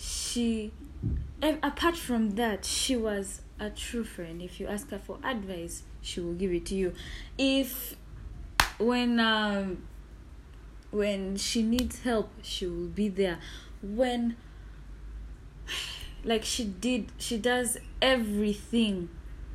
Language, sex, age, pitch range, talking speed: English, female, 10-29, 180-230 Hz, 115 wpm